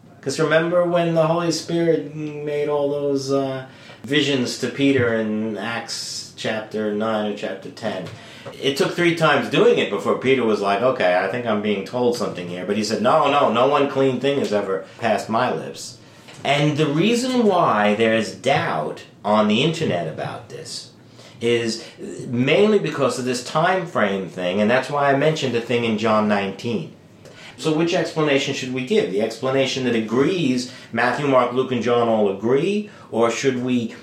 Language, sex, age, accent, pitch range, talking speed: English, male, 40-59, American, 115-160 Hz, 180 wpm